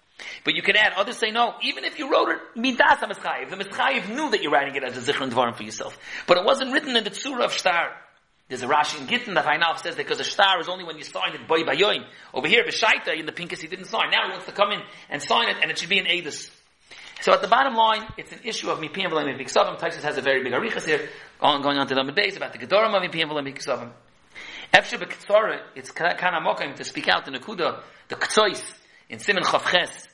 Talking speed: 250 wpm